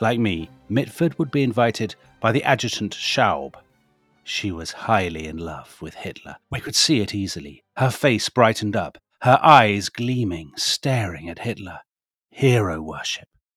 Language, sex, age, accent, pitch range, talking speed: English, male, 40-59, British, 95-120 Hz, 150 wpm